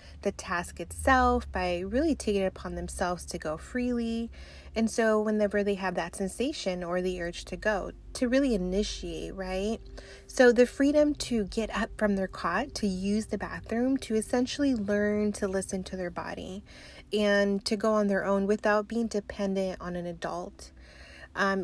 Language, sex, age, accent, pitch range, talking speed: English, female, 20-39, American, 180-215 Hz, 170 wpm